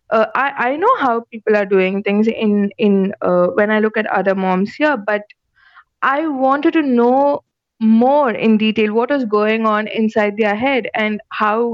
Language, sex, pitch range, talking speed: English, female, 215-280 Hz, 185 wpm